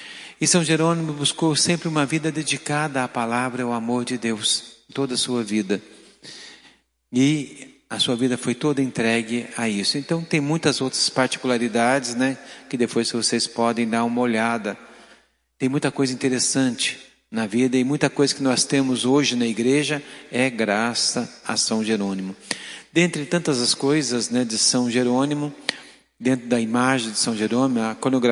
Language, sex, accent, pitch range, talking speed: Portuguese, male, Brazilian, 120-145 Hz, 155 wpm